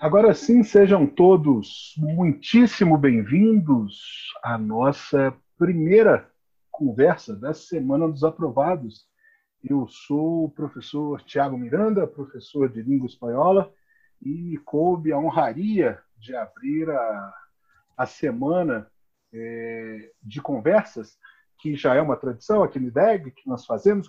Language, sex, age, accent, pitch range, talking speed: Portuguese, male, 40-59, Brazilian, 130-185 Hz, 115 wpm